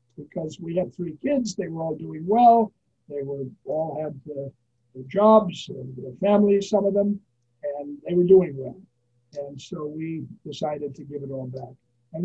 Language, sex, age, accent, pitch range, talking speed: English, male, 60-79, American, 135-185 Hz, 180 wpm